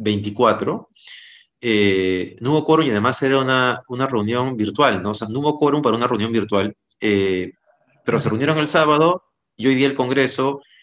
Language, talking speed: Spanish, 185 wpm